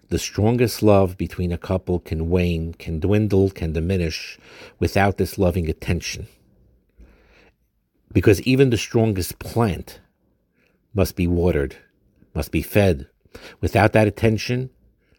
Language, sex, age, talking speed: English, male, 60-79, 120 wpm